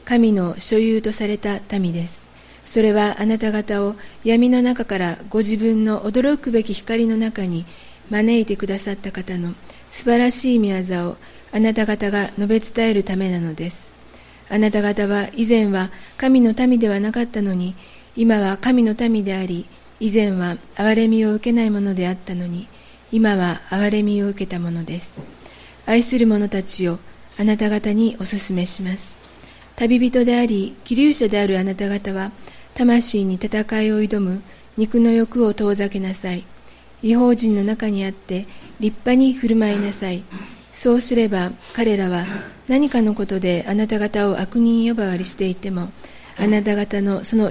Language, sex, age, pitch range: Japanese, female, 40-59, 195-225 Hz